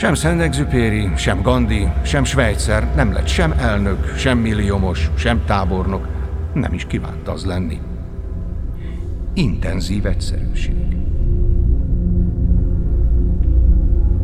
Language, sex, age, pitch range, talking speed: English, male, 50-69, 80-105 Hz, 90 wpm